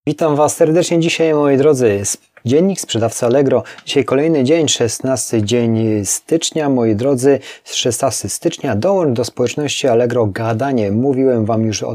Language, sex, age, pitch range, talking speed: Polish, male, 30-49, 110-135 Hz, 140 wpm